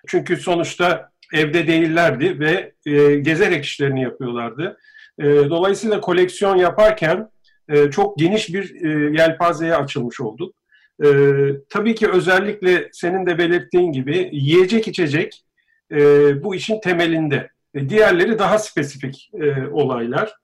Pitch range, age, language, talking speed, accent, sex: 150-205 Hz, 50-69, Turkish, 95 wpm, native, male